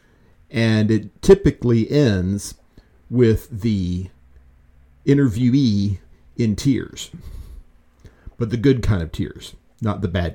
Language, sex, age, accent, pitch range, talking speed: English, male, 50-69, American, 95-120 Hz, 105 wpm